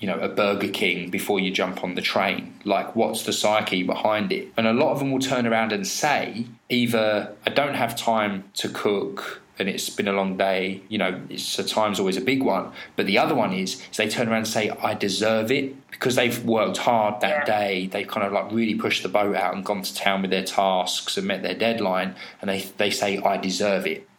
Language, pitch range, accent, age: English, 95-115 Hz, British, 20-39